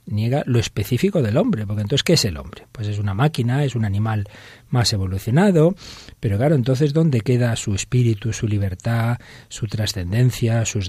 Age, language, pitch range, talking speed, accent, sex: 40-59, Spanish, 105-135 Hz, 175 wpm, Spanish, male